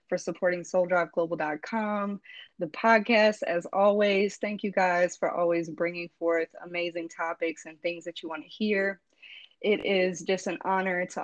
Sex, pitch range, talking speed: female, 175-210 Hz, 150 wpm